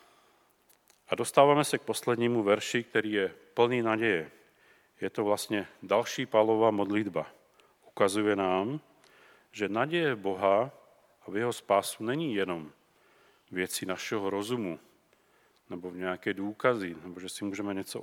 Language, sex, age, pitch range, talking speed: Czech, male, 40-59, 100-125 Hz, 130 wpm